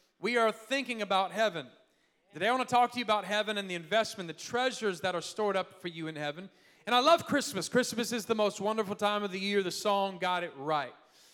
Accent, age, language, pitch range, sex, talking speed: American, 30-49, English, 180-235 Hz, male, 240 wpm